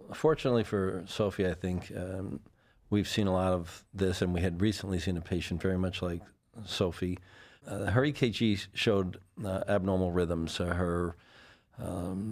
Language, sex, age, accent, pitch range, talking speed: English, male, 50-69, American, 85-100 Hz, 155 wpm